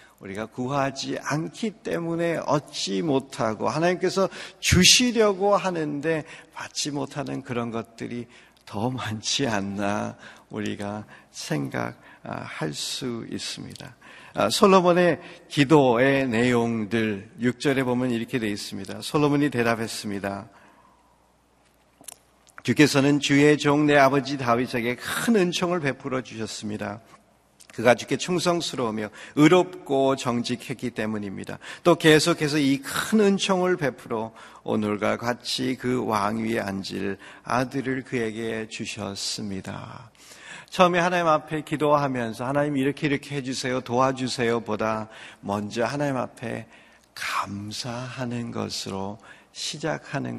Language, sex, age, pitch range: Korean, male, 50-69, 110-150 Hz